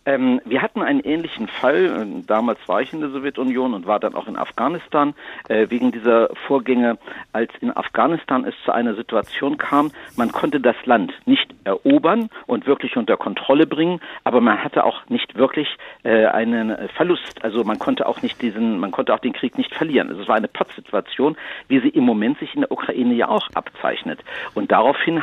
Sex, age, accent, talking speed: male, 50-69, German, 195 wpm